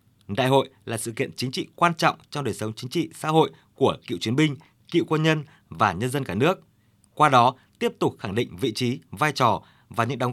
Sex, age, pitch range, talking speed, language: male, 20-39, 110-150 Hz, 240 wpm, Vietnamese